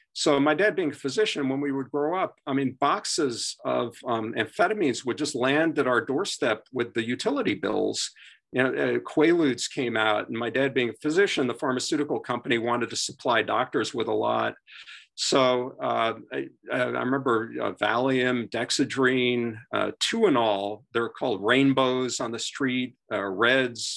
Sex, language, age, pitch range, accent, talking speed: male, English, 50-69, 120-145 Hz, American, 170 wpm